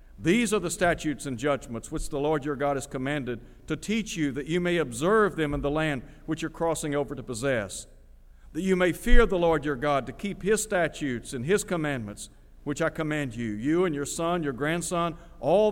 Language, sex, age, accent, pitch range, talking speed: English, male, 60-79, American, 125-170 Hz, 215 wpm